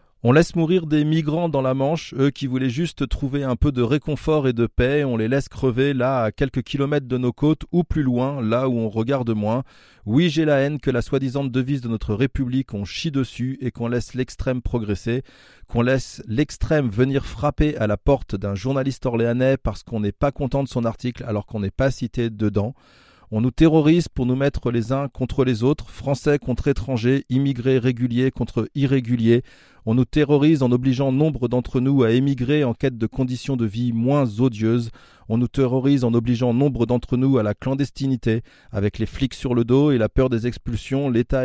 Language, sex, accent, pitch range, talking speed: French, male, French, 115-135 Hz, 205 wpm